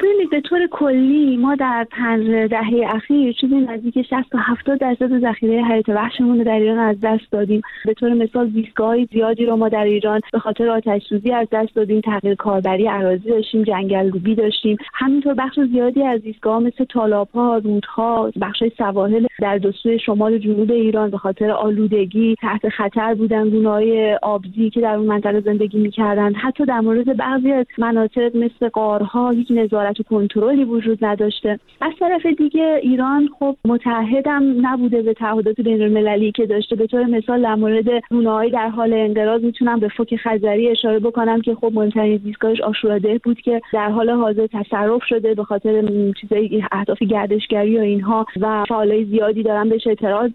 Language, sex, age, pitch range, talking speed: Persian, female, 30-49, 215-240 Hz, 165 wpm